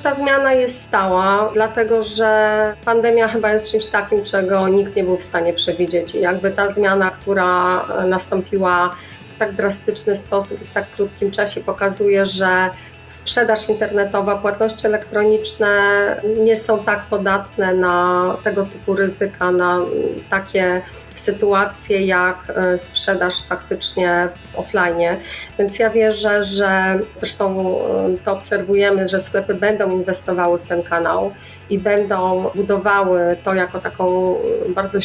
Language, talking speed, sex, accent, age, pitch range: Polish, 130 wpm, female, native, 30-49, 185-210 Hz